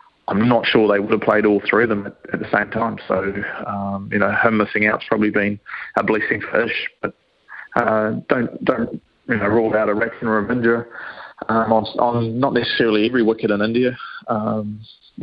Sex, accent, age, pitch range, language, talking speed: male, Australian, 20-39, 105-110 Hz, English, 205 wpm